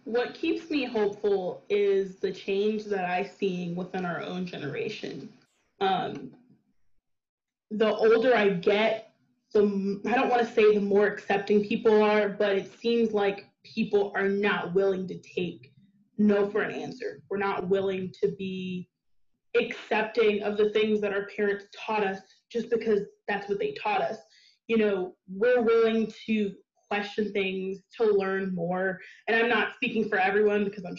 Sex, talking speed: female, 165 wpm